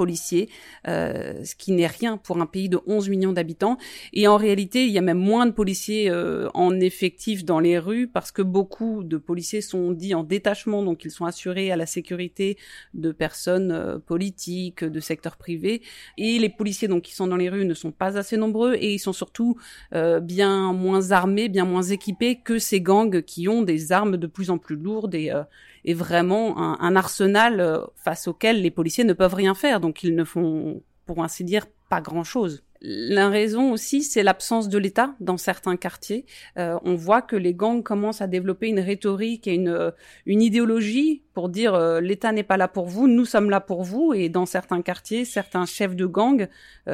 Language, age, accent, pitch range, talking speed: French, 30-49, French, 175-215 Hz, 210 wpm